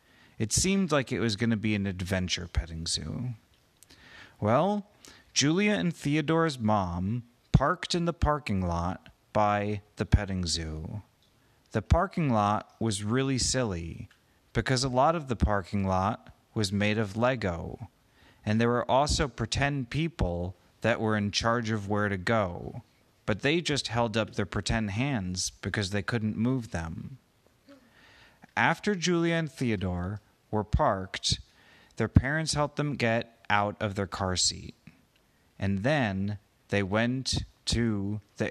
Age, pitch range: 30-49, 100-130 Hz